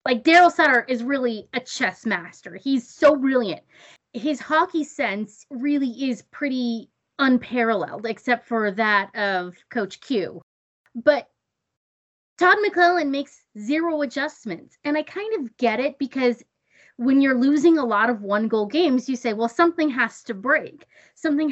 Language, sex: English, female